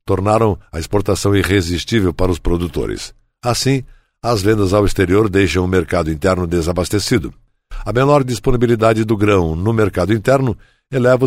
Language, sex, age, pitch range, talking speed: Portuguese, male, 60-79, 95-125 Hz, 140 wpm